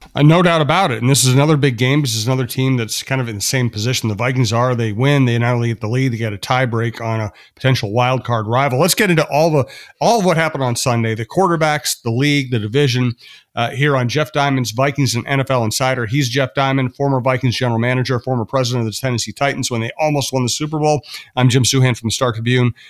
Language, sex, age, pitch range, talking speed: English, male, 40-59, 120-140 Hz, 250 wpm